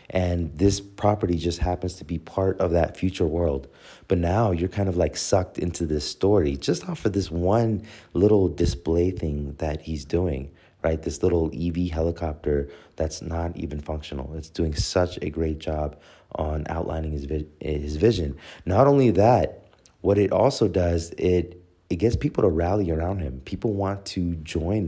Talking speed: 175 wpm